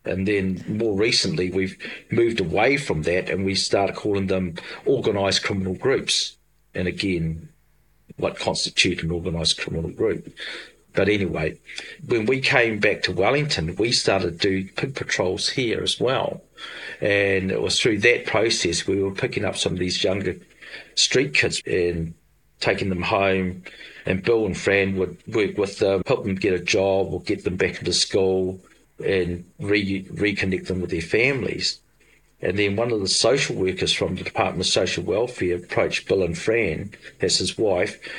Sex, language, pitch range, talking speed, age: male, English, 90-100 Hz, 170 wpm, 40-59